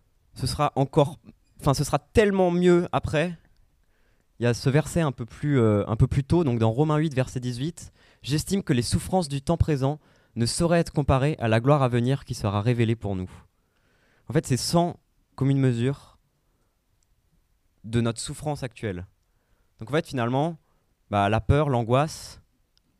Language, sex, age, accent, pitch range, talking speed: French, male, 20-39, French, 100-135 Hz, 175 wpm